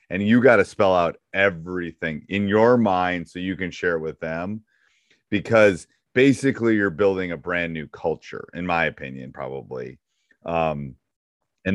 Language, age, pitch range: English, 30-49, 80-100 Hz